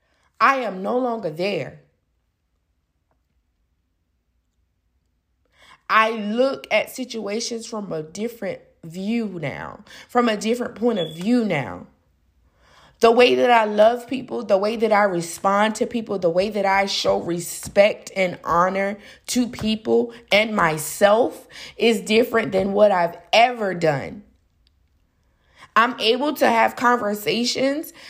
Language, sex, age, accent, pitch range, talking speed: English, female, 20-39, American, 180-245 Hz, 125 wpm